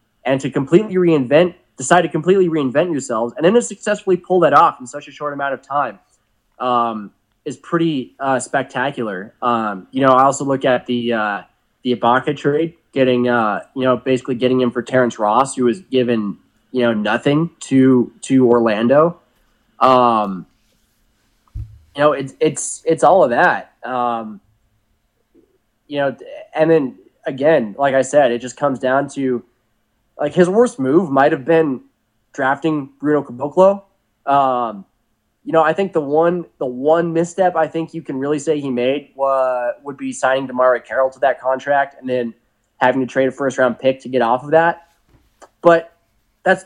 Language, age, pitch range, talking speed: English, 20-39, 120-155 Hz, 175 wpm